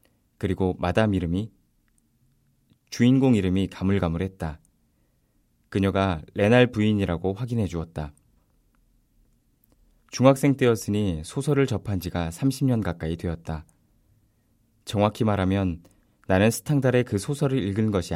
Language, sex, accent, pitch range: Korean, male, native, 85-115 Hz